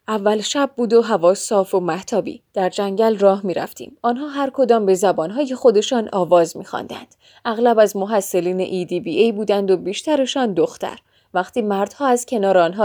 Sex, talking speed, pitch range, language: female, 170 wpm, 185-270 Hz, Persian